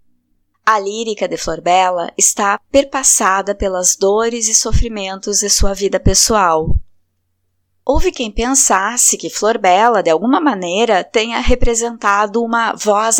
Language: Portuguese